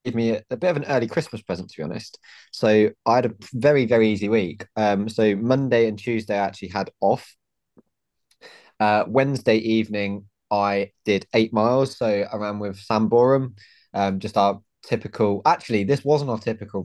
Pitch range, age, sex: 95-115 Hz, 20-39, male